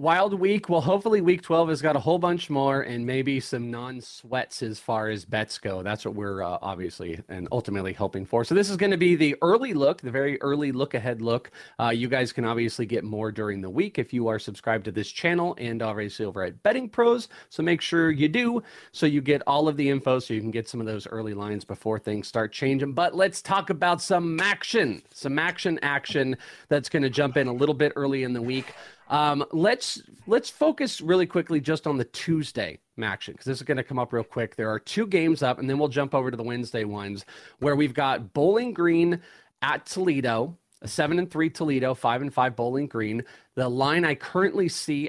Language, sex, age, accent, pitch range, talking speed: English, male, 30-49, American, 115-160 Hz, 225 wpm